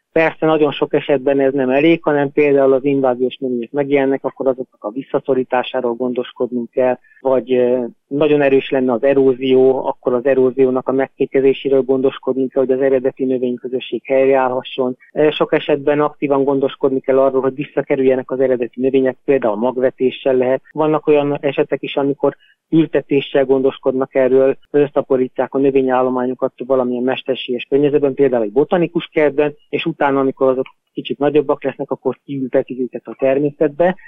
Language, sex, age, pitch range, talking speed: Hungarian, male, 30-49, 130-150 Hz, 145 wpm